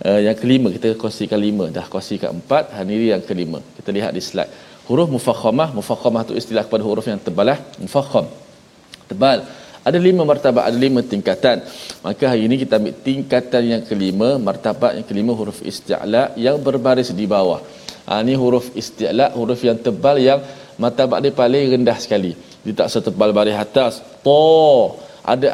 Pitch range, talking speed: 110-155 Hz, 160 wpm